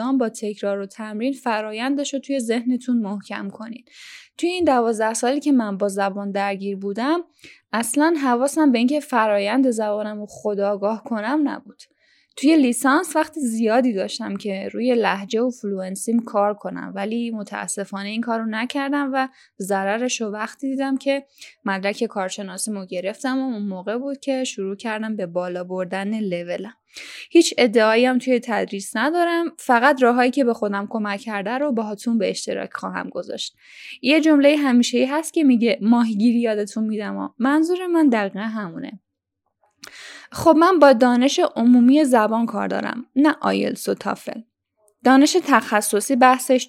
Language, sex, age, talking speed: Persian, female, 10-29, 150 wpm